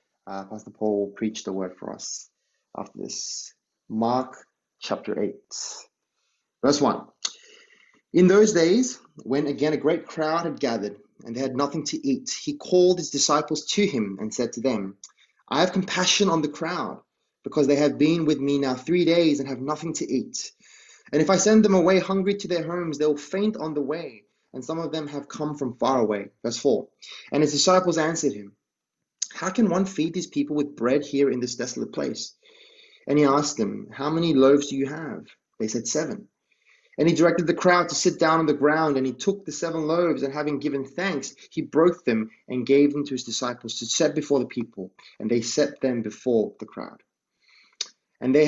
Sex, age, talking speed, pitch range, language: male, 20-39, 200 wpm, 130-170 Hz, English